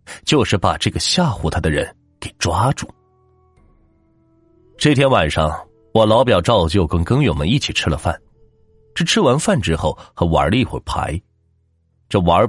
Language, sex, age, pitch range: Chinese, male, 30-49, 85-125 Hz